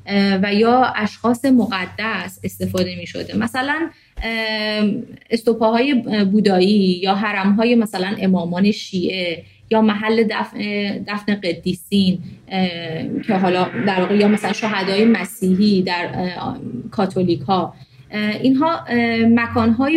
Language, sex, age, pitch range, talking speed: Persian, female, 30-49, 190-230 Hz, 90 wpm